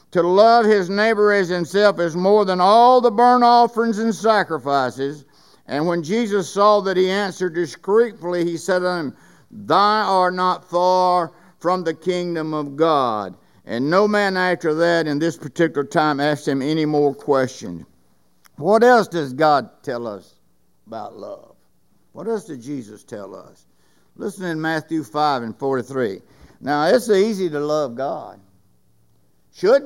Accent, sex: American, male